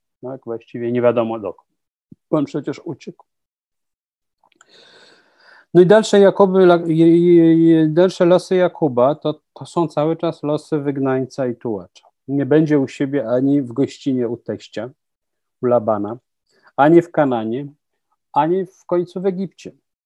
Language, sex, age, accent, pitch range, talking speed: Polish, male, 40-59, native, 120-165 Hz, 130 wpm